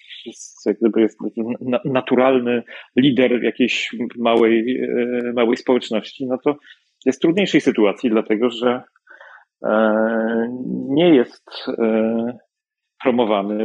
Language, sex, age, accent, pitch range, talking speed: Polish, male, 40-59, native, 115-140 Hz, 95 wpm